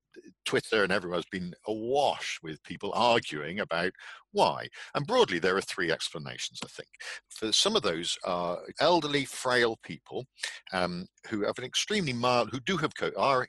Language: English